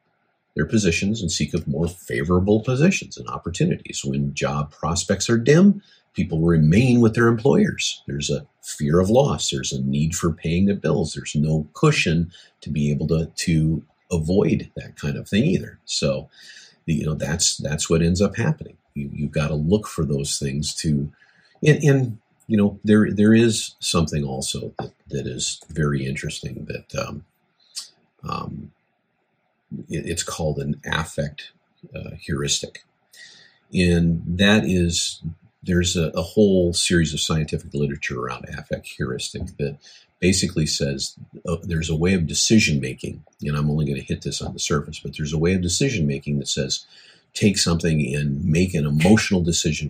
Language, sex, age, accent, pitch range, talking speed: English, male, 50-69, American, 75-100 Hz, 165 wpm